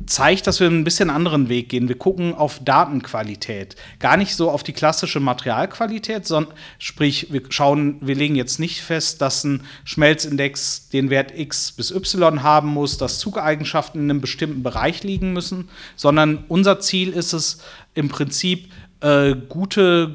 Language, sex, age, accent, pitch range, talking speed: German, male, 40-59, German, 135-165 Hz, 160 wpm